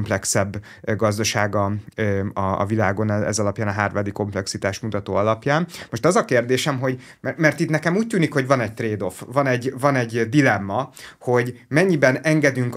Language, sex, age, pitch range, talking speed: Hungarian, male, 30-49, 110-135 Hz, 150 wpm